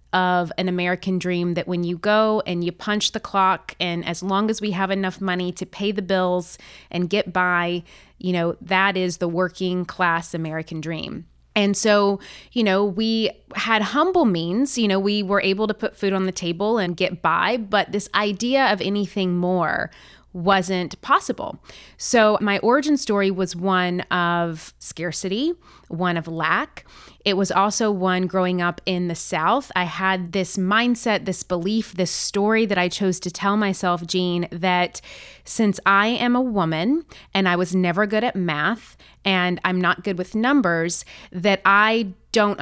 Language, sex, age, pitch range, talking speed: English, female, 20-39, 180-210 Hz, 175 wpm